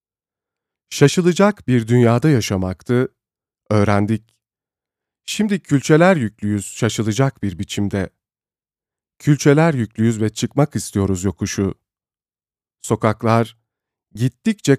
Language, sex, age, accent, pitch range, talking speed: Turkish, male, 40-59, native, 95-120 Hz, 75 wpm